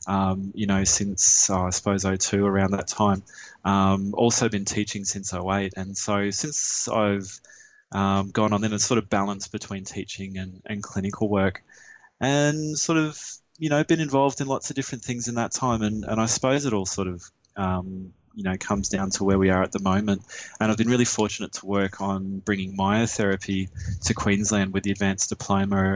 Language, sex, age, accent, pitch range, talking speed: English, male, 20-39, Australian, 95-110 Hz, 200 wpm